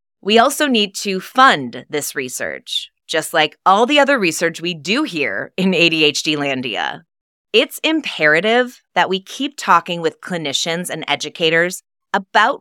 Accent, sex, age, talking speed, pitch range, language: American, female, 20-39, 145 wpm, 155-215 Hz, English